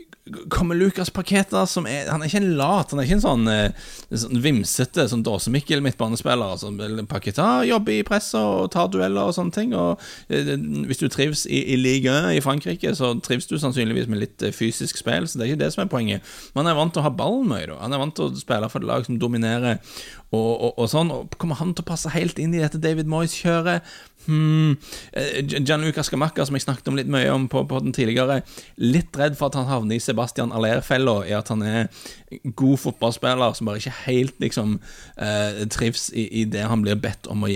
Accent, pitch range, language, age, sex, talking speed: Norwegian, 110-150 Hz, English, 30-49, male, 220 wpm